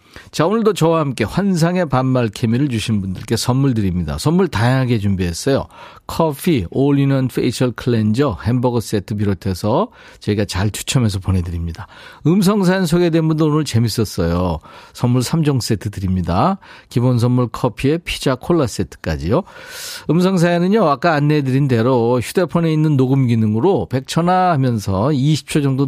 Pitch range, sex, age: 105-160 Hz, male, 40-59